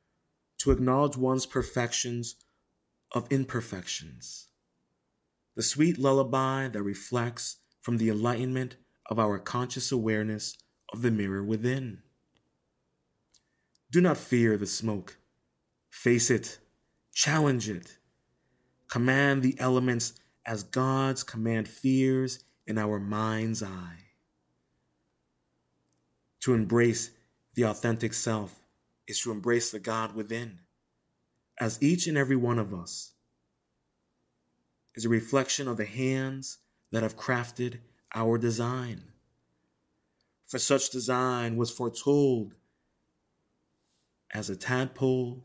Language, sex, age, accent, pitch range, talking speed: English, male, 30-49, American, 90-125 Hz, 105 wpm